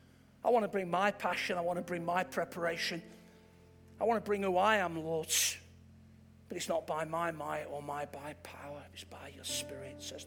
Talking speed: 205 wpm